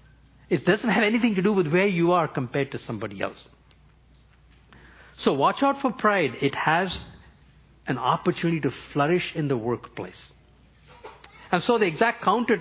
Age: 50-69